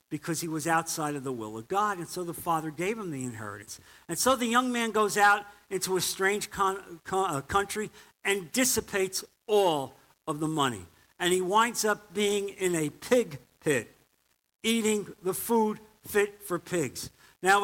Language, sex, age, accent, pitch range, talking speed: English, male, 50-69, American, 160-210 Hz, 175 wpm